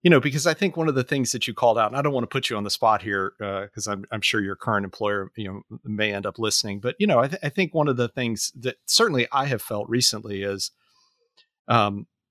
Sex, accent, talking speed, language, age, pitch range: male, American, 280 wpm, English, 40-59, 105-135 Hz